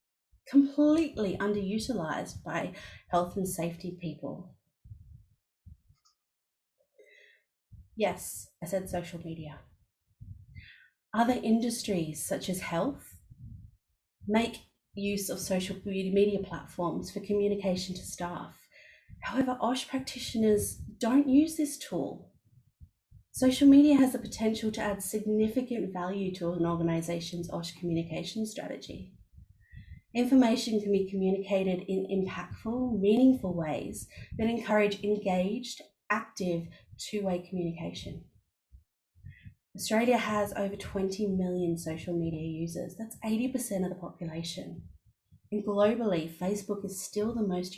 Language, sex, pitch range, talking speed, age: English, female, 170-220 Hz, 105 wpm, 30-49